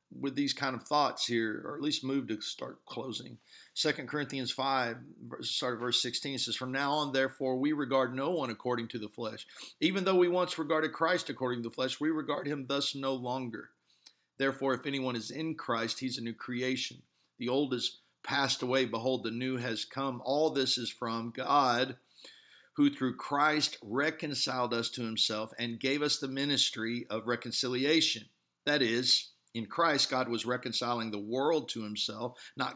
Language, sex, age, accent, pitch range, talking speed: English, male, 50-69, American, 115-145 Hz, 185 wpm